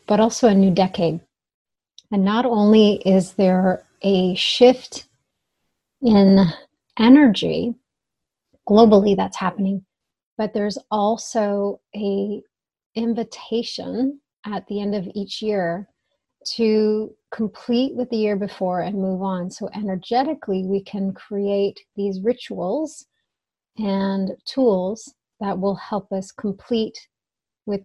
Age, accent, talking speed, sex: 30-49, American, 110 wpm, female